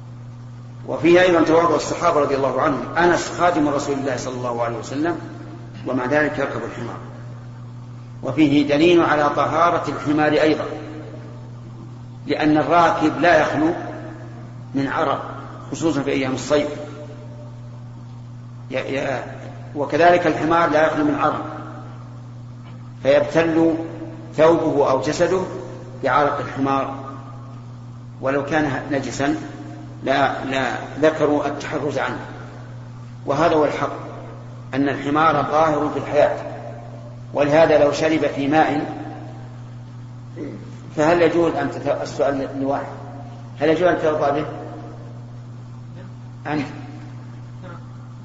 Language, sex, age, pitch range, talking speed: Arabic, male, 50-69, 120-150 Hz, 100 wpm